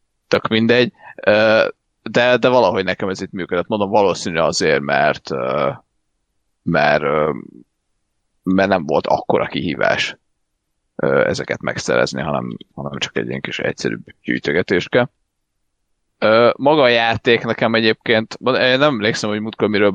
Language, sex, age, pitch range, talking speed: Hungarian, male, 30-49, 100-115 Hz, 110 wpm